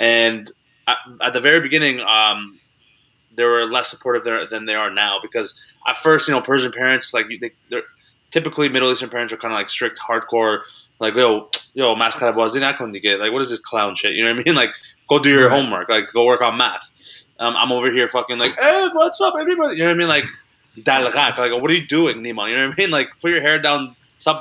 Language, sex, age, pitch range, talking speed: English, male, 20-39, 115-140 Hz, 220 wpm